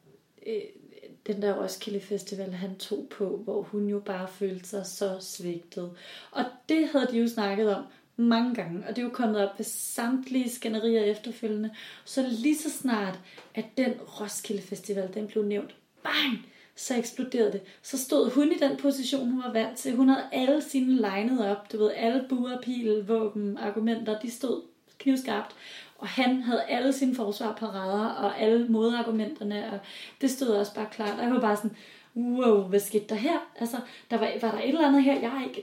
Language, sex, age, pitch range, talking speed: Danish, female, 30-49, 205-255 Hz, 185 wpm